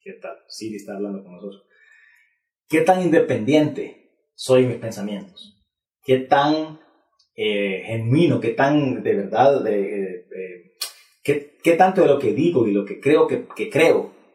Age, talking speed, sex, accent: 30-49, 160 wpm, male, Mexican